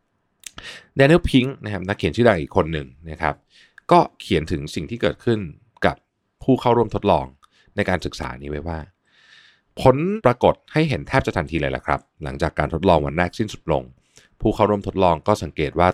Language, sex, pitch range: Thai, male, 85-110 Hz